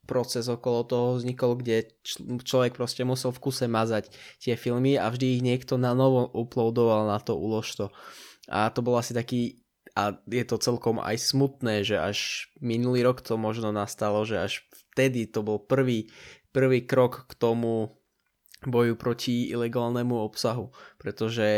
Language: Czech